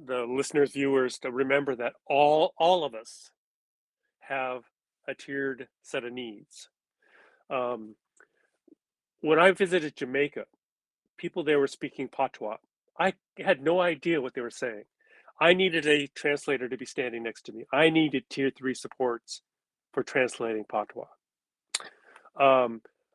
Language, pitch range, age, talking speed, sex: English, 130-165 Hz, 40-59, 135 wpm, male